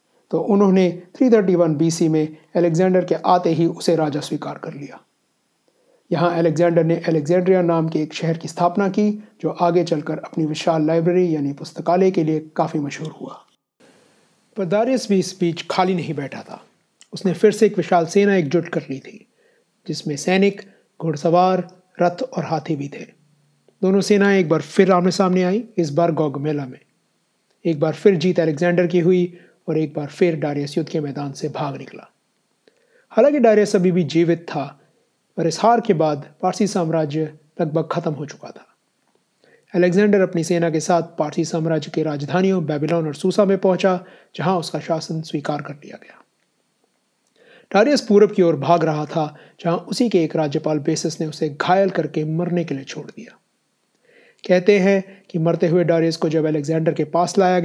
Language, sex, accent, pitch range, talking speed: Hindi, male, native, 160-185 Hz, 170 wpm